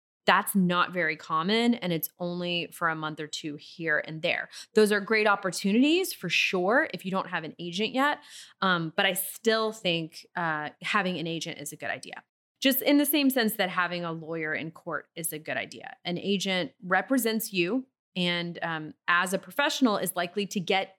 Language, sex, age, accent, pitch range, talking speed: English, female, 30-49, American, 170-225 Hz, 195 wpm